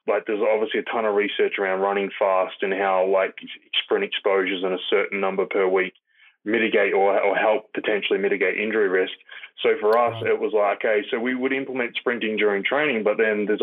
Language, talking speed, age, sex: English, 205 wpm, 20-39, male